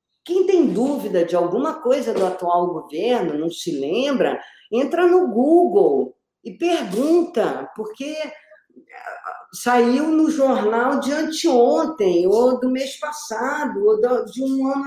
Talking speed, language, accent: 125 wpm, Portuguese, Brazilian